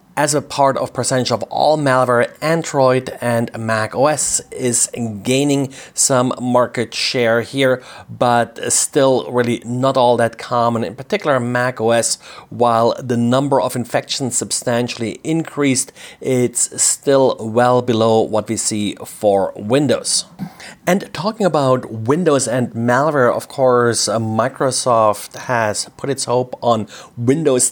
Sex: male